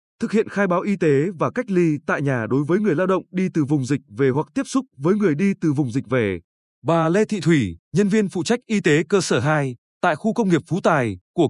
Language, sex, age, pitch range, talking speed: Vietnamese, male, 20-39, 145-200 Hz, 265 wpm